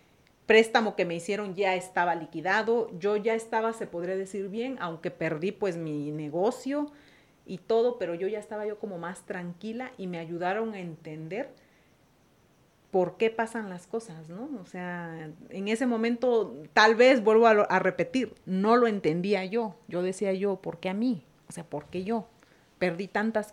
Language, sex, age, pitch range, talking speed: Spanish, female, 40-59, 180-235 Hz, 180 wpm